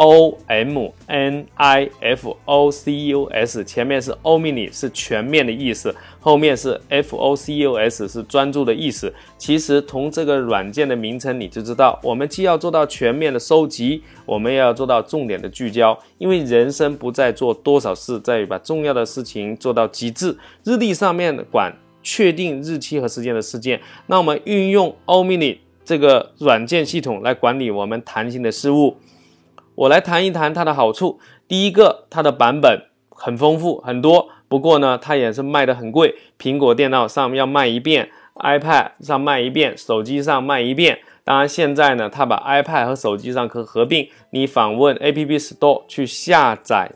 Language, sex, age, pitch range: Chinese, male, 20-39, 120-155 Hz